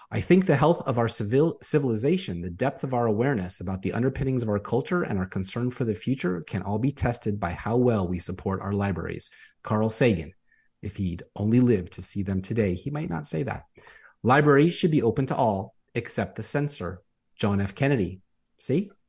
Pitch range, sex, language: 100-135 Hz, male, English